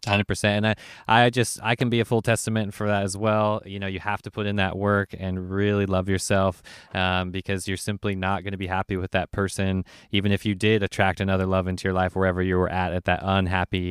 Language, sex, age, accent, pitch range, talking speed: English, male, 20-39, American, 95-115 Hz, 250 wpm